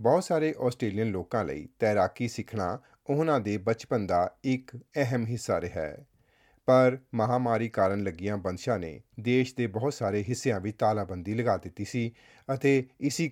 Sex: male